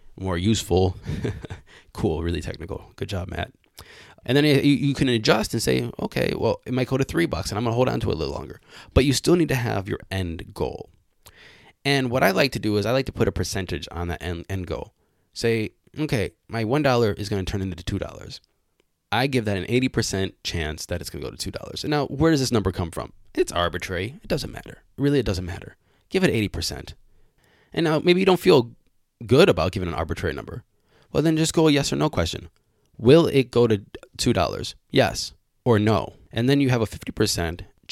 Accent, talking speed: American, 225 wpm